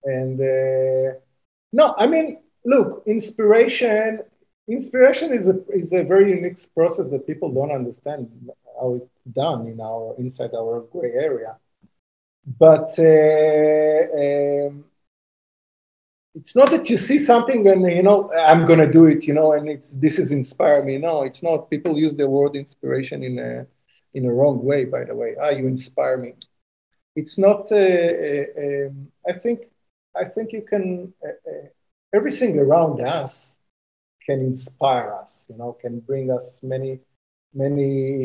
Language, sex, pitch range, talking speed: English, male, 130-185 Hz, 155 wpm